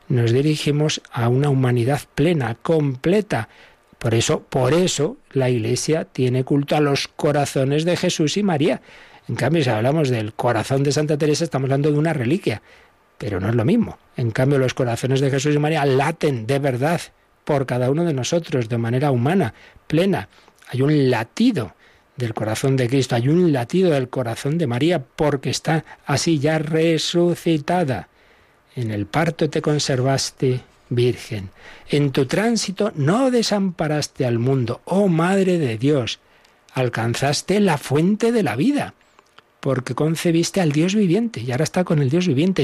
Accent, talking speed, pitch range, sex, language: Spanish, 160 wpm, 130-170 Hz, male, Spanish